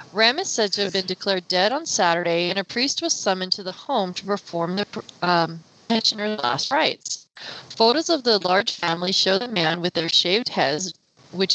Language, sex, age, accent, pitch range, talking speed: English, female, 30-49, American, 180-240 Hz, 195 wpm